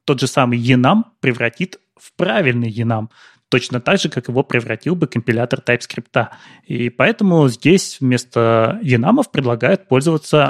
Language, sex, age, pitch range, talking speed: Russian, male, 20-39, 120-145 Hz, 135 wpm